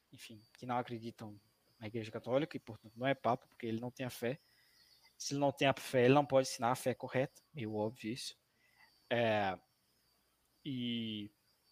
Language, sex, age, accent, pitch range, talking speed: Portuguese, male, 20-39, Brazilian, 120-140 Hz, 185 wpm